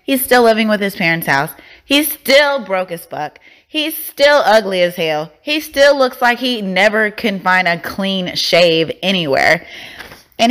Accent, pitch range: American, 175-245 Hz